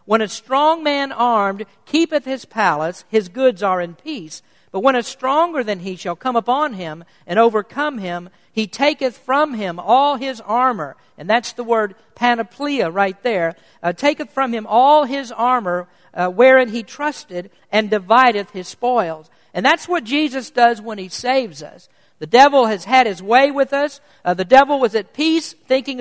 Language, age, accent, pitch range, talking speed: English, 50-69, American, 210-270 Hz, 180 wpm